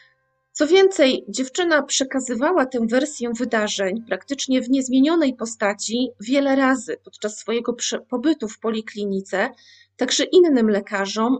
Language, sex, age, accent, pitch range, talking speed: Polish, female, 30-49, native, 215-270 Hz, 110 wpm